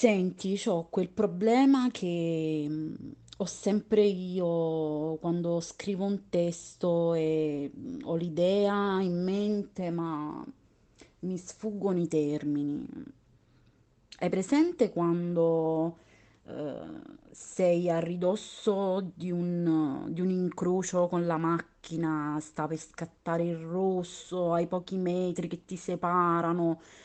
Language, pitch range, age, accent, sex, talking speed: Italian, 165-180 Hz, 30-49, native, female, 105 wpm